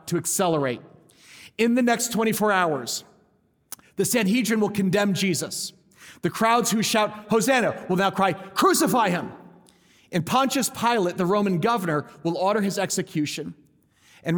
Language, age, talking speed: English, 40-59, 140 wpm